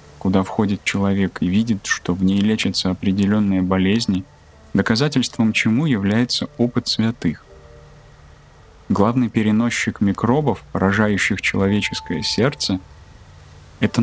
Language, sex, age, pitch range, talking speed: Russian, male, 20-39, 95-115 Hz, 100 wpm